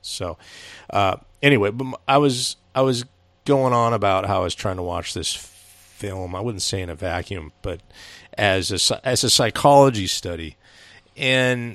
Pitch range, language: 90-125 Hz, English